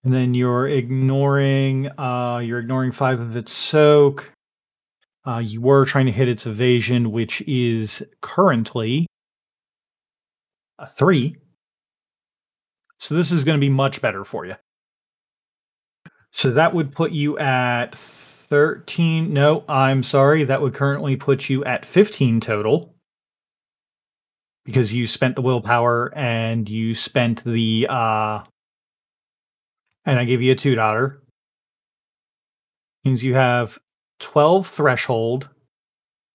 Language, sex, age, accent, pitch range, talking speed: English, male, 30-49, American, 120-145 Hz, 120 wpm